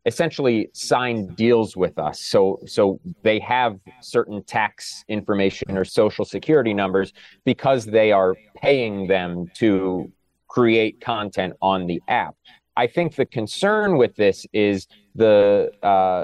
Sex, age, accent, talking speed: male, 30-49, American, 135 wpm